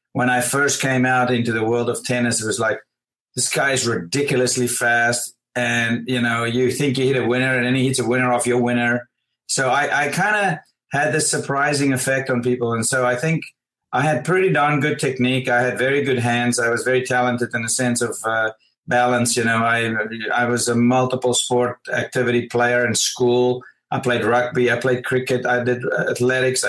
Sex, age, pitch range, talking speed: male, 30-49, 120-135 Hz, 205 wpm